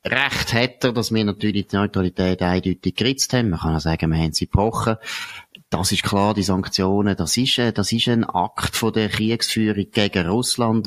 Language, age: German, 30-49